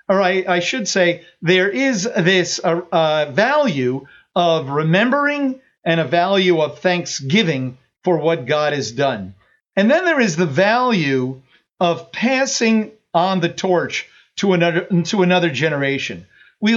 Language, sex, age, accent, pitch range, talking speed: English, male, 50-69, American, 165-225 Hz, 145 wpm